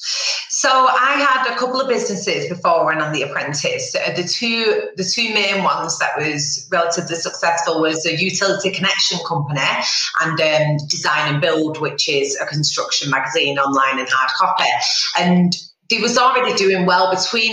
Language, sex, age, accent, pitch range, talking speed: English, female, 30-49, British, 165-220 Hz, 170 wpm